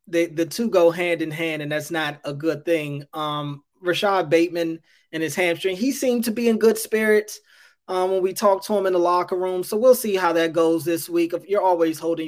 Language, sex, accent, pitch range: English, male, American, 160-195 Hz